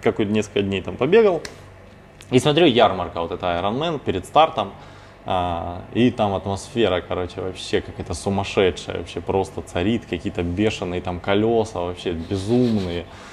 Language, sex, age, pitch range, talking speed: Russian, male, 20-39, 90-110 Hz, 130 wpm